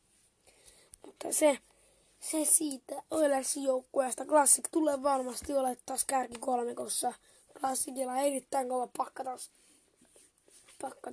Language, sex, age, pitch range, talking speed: Finnish, female, 20-39, 245-285 Hz, 95 wpm